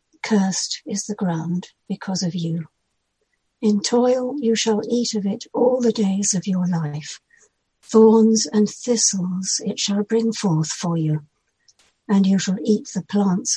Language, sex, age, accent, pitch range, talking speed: English, female, 60-79, British, 185-225 Hz, 155 wpm